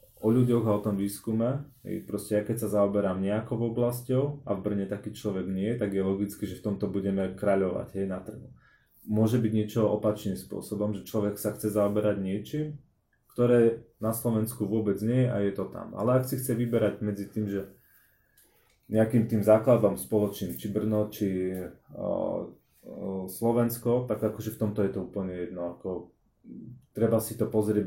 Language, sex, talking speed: Slovak, male, 170 wpm